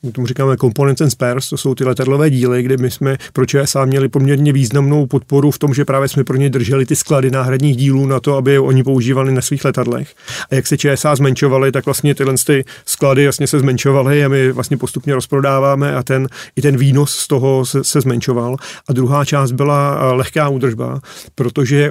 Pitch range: 130-145 Hz